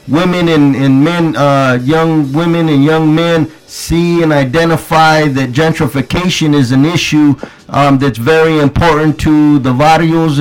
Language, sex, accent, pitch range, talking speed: English, male, American, 145-170 Hz, 145 wpm